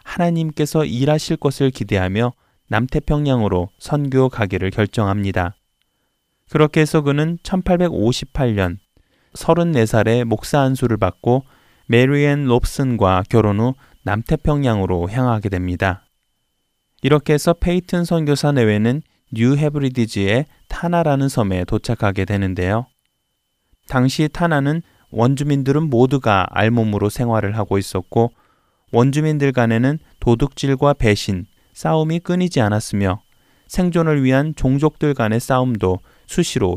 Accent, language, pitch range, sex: native, Korean, 105-145 Hz, male